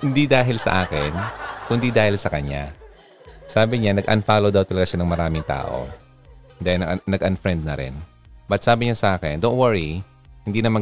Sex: male